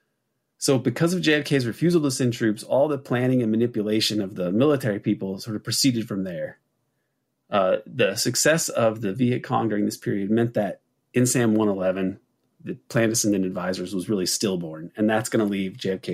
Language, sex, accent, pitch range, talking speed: English, male, American, 105-130 Hz, 195 wpm